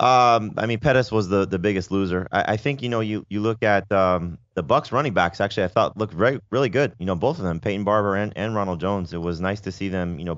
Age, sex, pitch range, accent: 20-39, male, 85-110 Hz, American